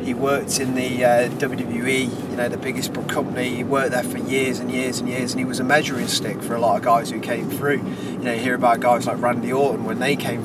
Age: 20-39